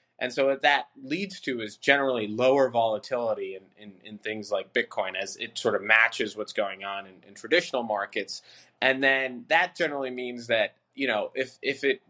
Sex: male